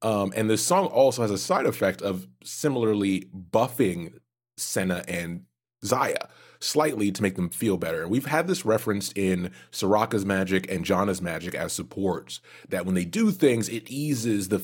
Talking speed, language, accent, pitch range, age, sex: 170 wpm, English, American, 90-115 Hz, 30-49, male